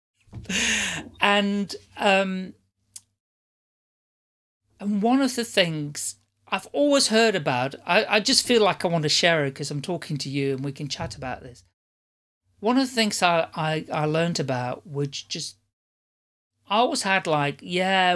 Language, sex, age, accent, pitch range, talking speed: English, male, 40-59, British, 135-195 Hz, 160 wpm